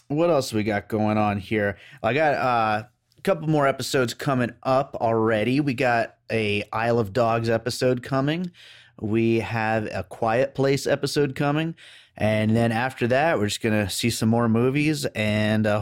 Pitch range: 105-125 Hz